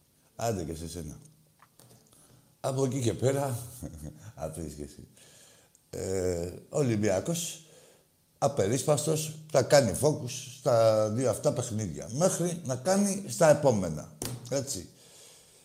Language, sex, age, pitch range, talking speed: Greek, male, 60-79, 110-150 Hz, 105 wpm